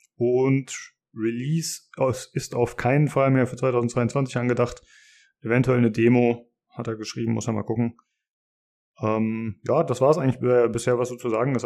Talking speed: 165 wpm